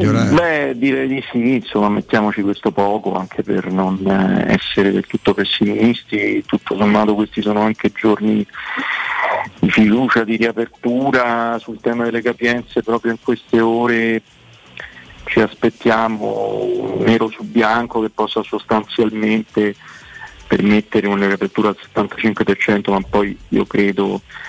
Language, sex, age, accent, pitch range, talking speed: Italian, male, 50-69, native, 100-115 Hz, 125 wpm